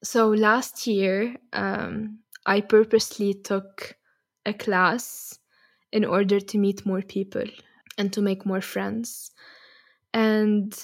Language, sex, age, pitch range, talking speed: English, female, 10-29, 200-230 Hz, 115 wpm